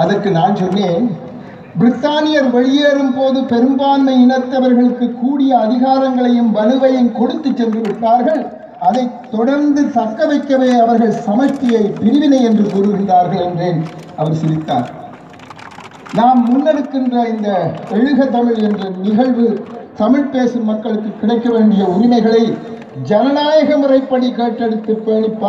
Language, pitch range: English, 220-265 Hz